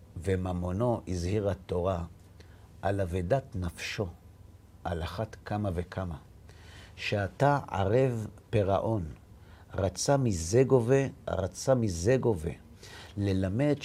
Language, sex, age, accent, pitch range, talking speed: Hebrew, male, 50-69, native, 90-130 Hz, 85 wpm